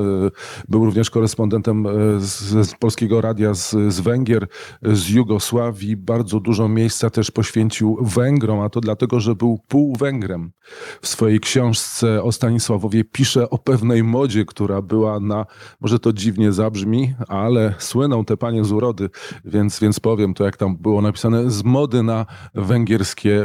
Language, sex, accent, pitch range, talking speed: Polish, male, native, 105-120 Hz, 150 wpm